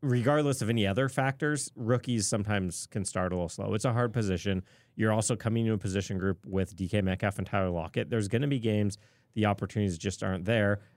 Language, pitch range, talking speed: English, 95-120 Hz, 215 wpm